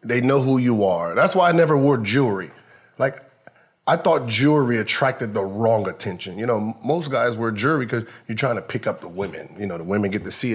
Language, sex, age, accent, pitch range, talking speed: English, male, 30-49, American, 110-140 Hz, 230 wpm